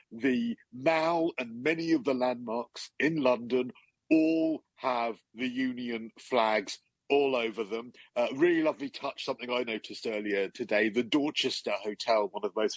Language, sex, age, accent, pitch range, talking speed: English, male, 40-59, British, 115-155 Hz, 155 wpm